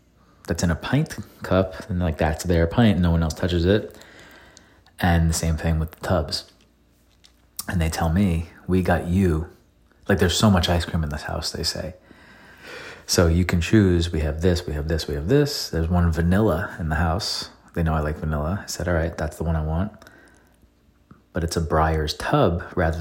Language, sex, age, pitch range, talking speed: English, male, 30-49, 80-90 Hz, 205 wpm